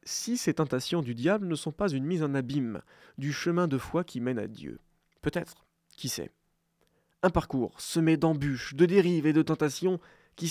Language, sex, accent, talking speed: French, male, French, 190 wpm